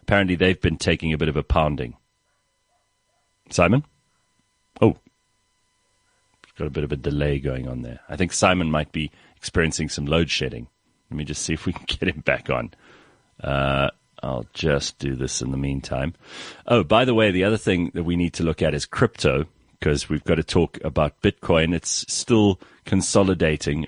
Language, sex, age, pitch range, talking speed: English, male, 40-59, 75-100 Hz, 185 wpm